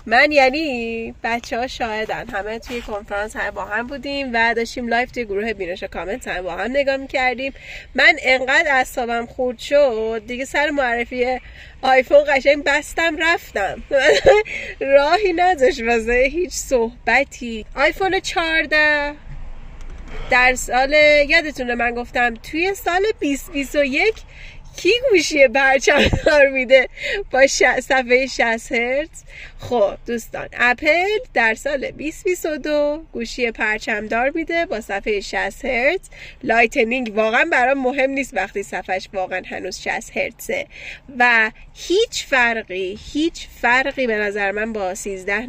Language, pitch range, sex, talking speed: Persian, 225-295 Hz, female, 125 wpm